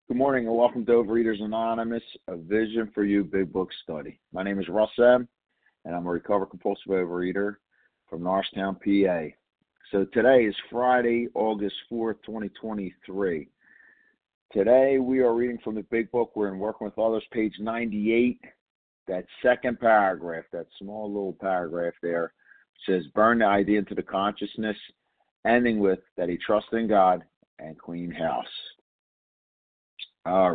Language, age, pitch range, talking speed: English, 50-69, 95-115 Hz, 150 wpm